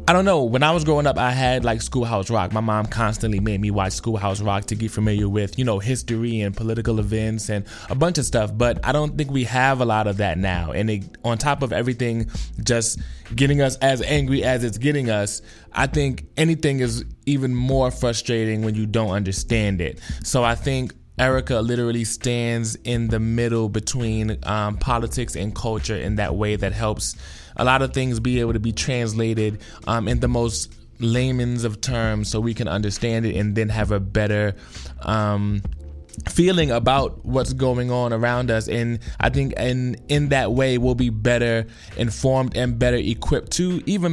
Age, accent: 20-39, American